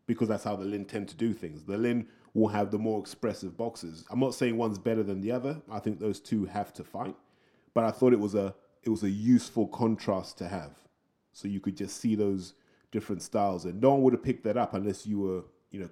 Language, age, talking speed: English, 30-49, 250 wpm